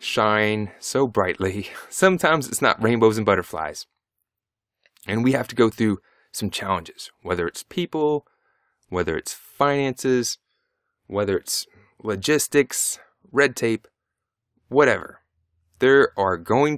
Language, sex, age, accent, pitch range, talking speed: English, male, 20-39, American, 95-125 Hz, 115 wpm